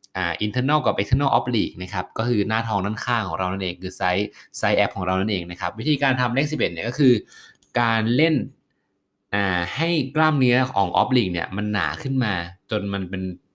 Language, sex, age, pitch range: Thai, male, 20-39, 95-125 Hz